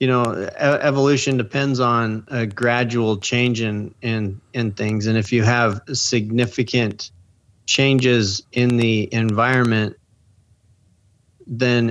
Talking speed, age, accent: 110 wpm, 30-49, American